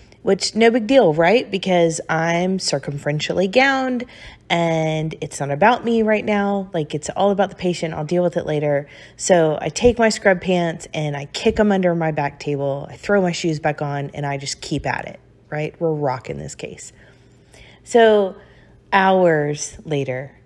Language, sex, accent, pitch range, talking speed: English, female, American, 155-200 Hz, 180 wpm